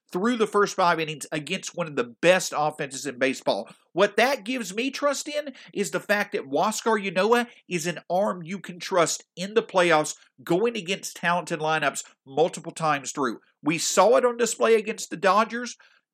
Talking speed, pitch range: 180 wpm, 160-225 Hz